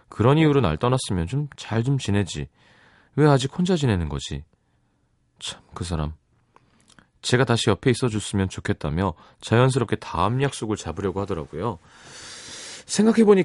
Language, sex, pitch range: Korean, male, 95-135 Hz